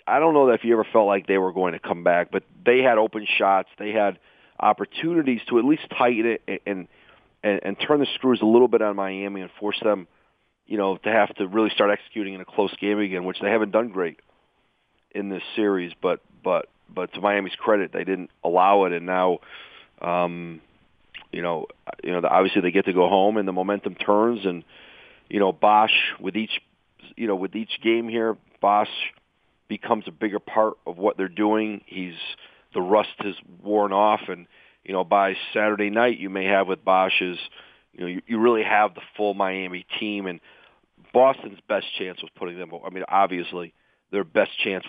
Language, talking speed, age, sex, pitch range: English, 200 wpm, 40-59, male, 95-105 Hz